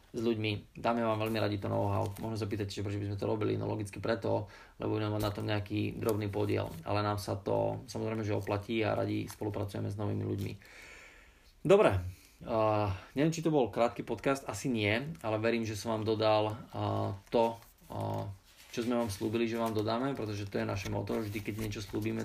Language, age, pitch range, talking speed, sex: Slovak, 20-39, 100-110 Hz, 200 wpm, male